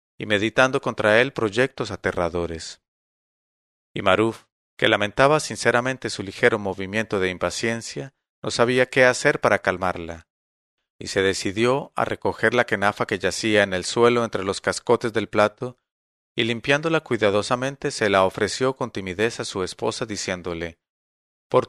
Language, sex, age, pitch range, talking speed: English, male, 40-59, 95-125 Hz, 145 wpm